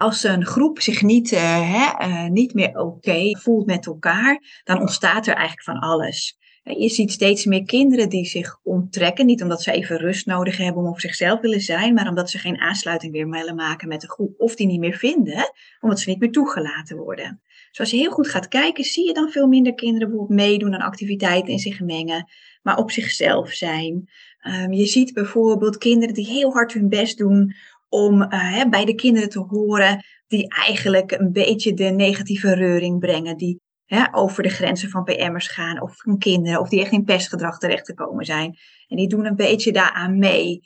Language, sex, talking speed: Dutch, female, 205 wpm